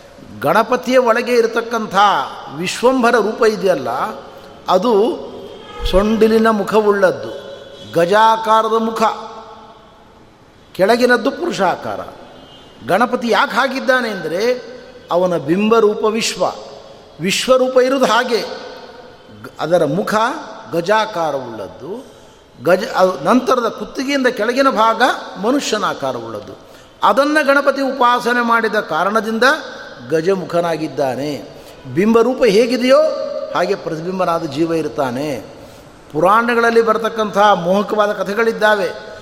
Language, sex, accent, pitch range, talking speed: Kannada, male, native, 195-240 Hz, 75 wpm